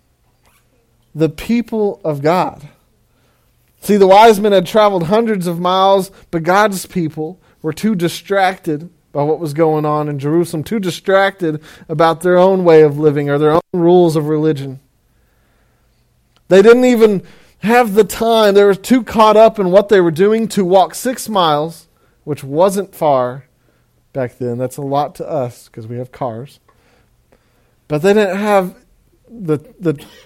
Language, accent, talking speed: English, American, 160 wpm